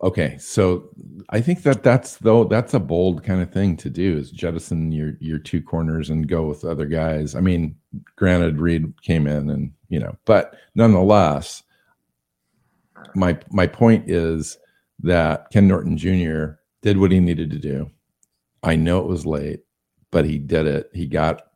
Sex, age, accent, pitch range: male, 50-69, American, 75-90 Hz